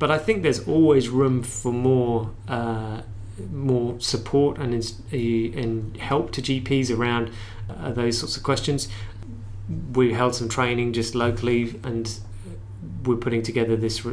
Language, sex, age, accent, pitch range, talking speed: English, male, 30-49, British, 110-130 Hz, 145 wpm